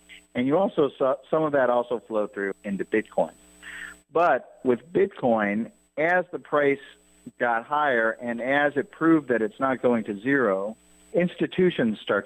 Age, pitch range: 50-69, 100-125 Hz